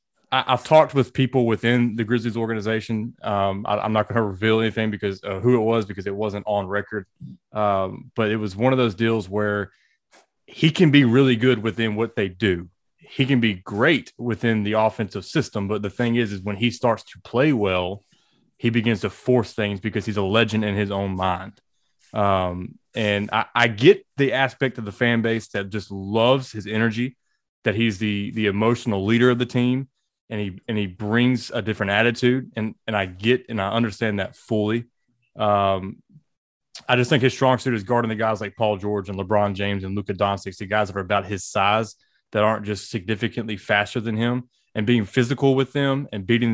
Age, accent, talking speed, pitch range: 20-39, American, 205 wpm, 105-120 Hz